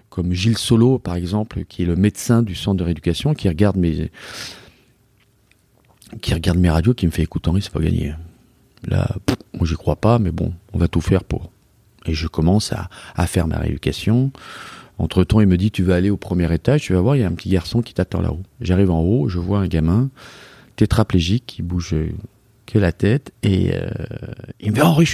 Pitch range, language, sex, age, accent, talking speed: 90-115 Hz, French, male, 40-59, French, 230 wpm